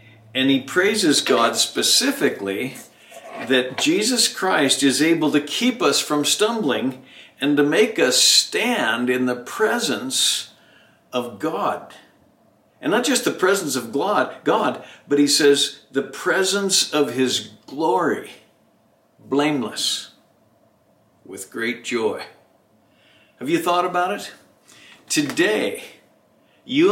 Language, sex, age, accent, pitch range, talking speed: English, male, 60-79, American, 135-225 Hz, 115 wpm